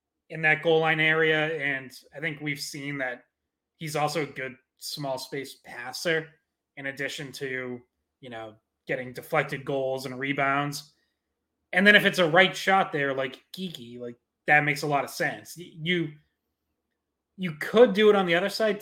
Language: English